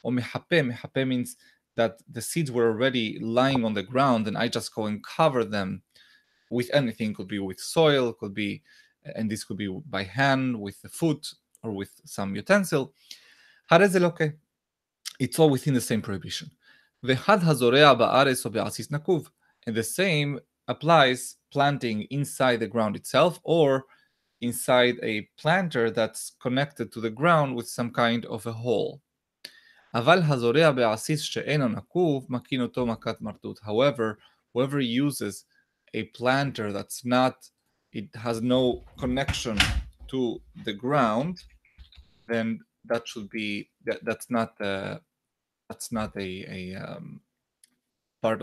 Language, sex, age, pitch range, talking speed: English, male, 20-39, 110-140 Hz, 120 wpm